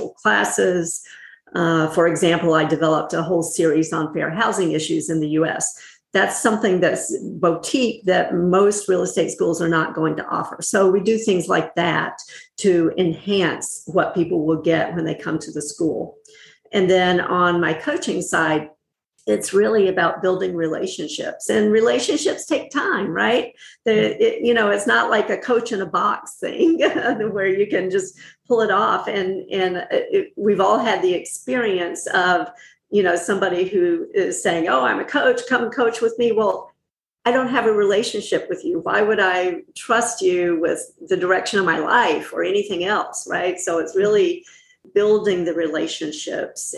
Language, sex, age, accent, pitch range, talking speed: English, female, 50-69, American, 170-230 Hz, 170 wpm